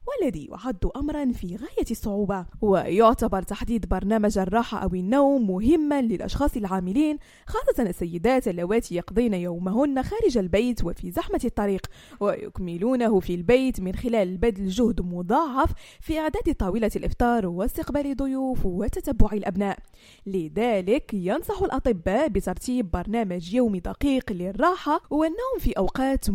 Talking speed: 120 wpm